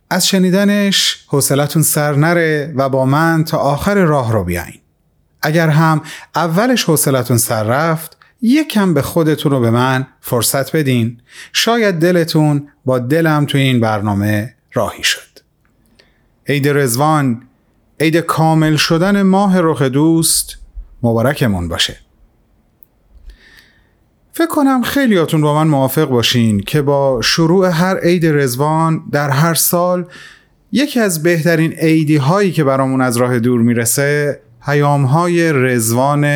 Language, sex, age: Persian, male, 30-49